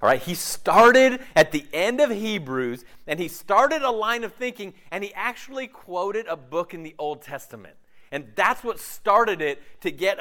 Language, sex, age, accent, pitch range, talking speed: English, male, 40-59, American, 155-220 Hz, 190 wpm